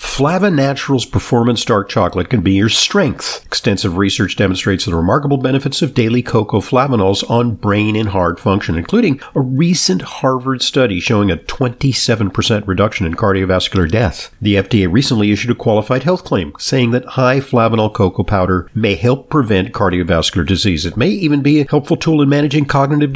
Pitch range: 100-145 Hz